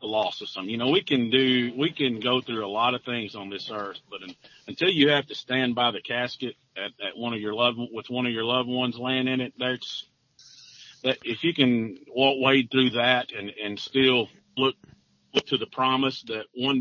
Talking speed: 225 wpm